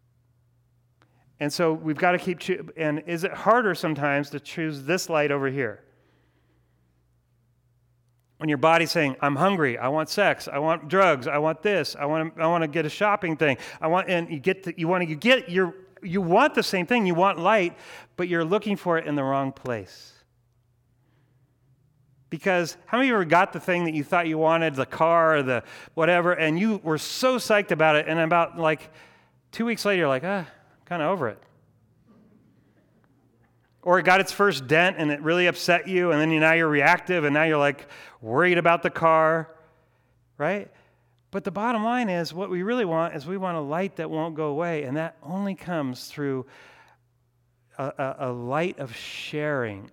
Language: English